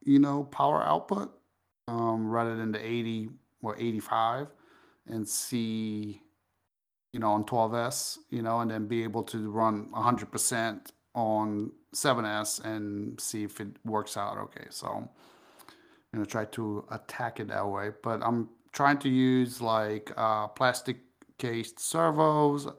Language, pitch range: English, 105-125 Hz